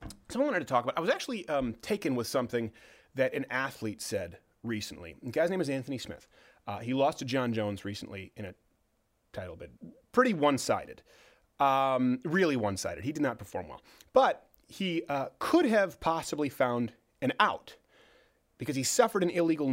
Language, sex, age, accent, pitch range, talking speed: English, male, 30-49, American, 115-160 Hz, 175 wpm